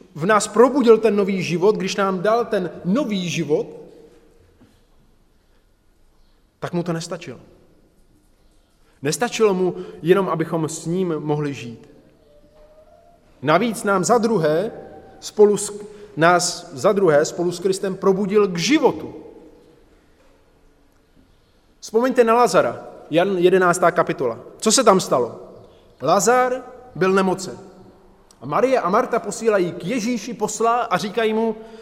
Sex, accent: male, native